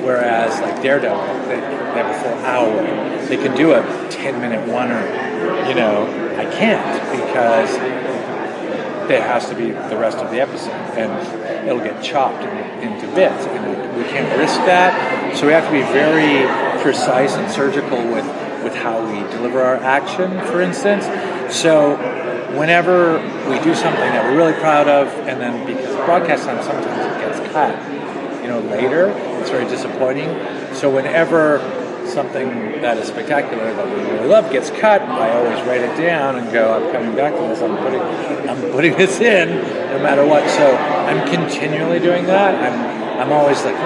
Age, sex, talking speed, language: 40-59, male, 180 wpm, English